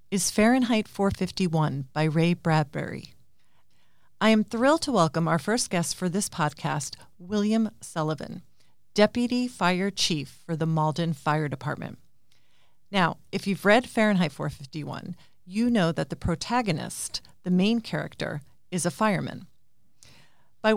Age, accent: 40-59, American